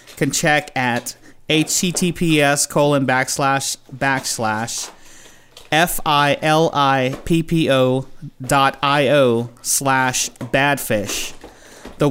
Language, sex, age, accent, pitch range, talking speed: English, male, 30-49, American, 125-145 Hz, 65 wpm